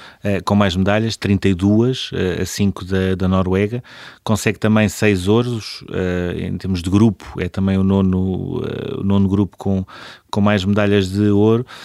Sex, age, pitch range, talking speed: male, 30-49, 100-115 Hz, 145 wpm